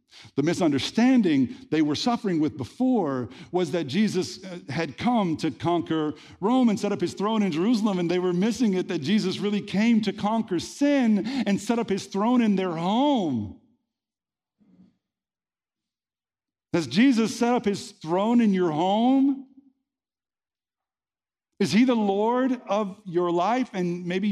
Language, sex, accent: English, male, American